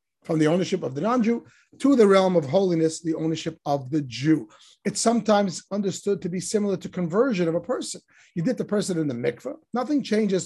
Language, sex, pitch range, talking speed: English, male, 165-230 Hz, 205 wpm